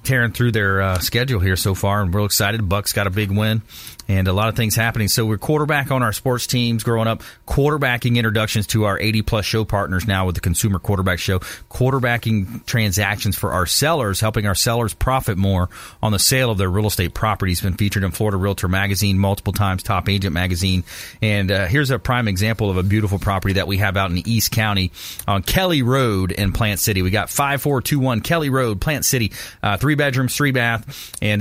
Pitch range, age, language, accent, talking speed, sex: 100-120 Hz, 30-49, English, American, 210 wpm, male